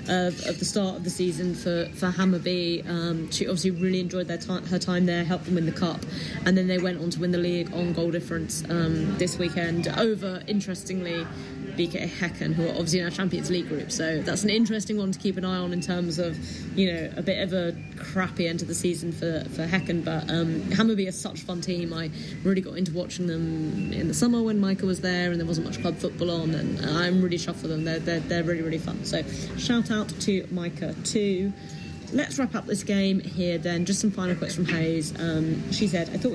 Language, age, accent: English, 20-39, British